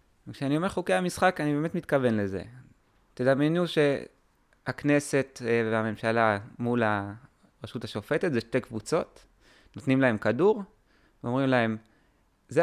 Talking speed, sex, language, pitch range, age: 110 wpm, male, Hebrew, 105-145 Hz, 20-39